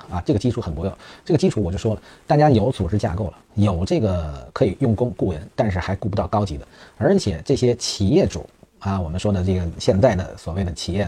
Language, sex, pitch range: Chinese, male, 90-115 Hz